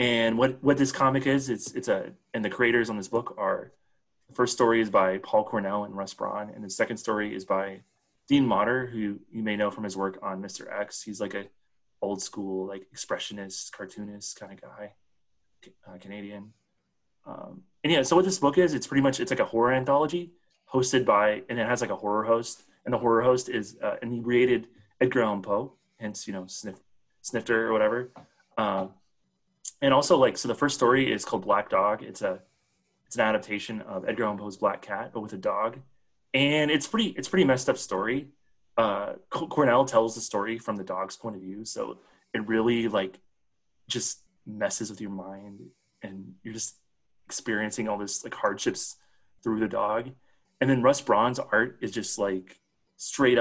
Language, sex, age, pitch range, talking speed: English, male, 30-49, 105-130 Hz, 200 wpm